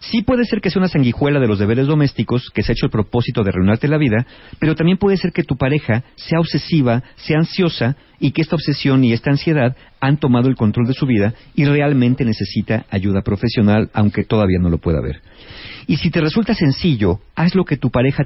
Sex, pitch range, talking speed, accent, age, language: male, 115-155 Hz, 220 wpm, Mexican, 50-69, Spanish